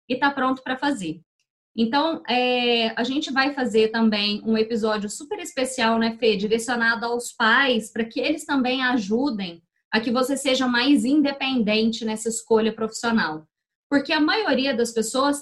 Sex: female